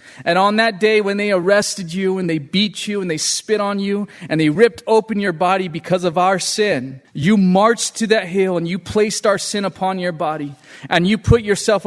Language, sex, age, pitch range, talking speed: English, male, 30-49, 175-210 Hz, 225 wpm